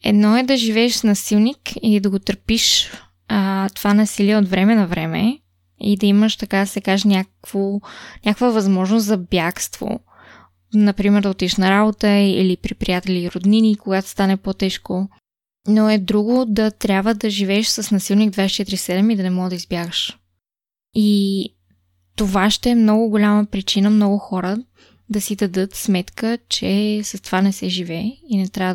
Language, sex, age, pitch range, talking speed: Bulgarian, female, 20-39, 185-215 Hz, 165 wpm